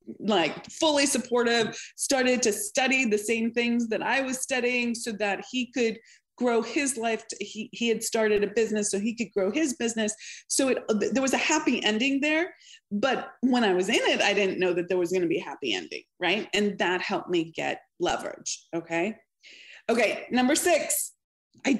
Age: 20-39